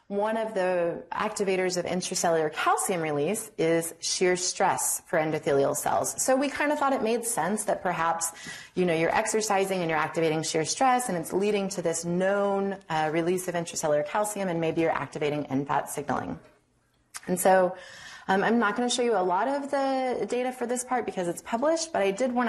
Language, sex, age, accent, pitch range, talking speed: English, female, 20-39, American, 160-210 Hz, 195 wpm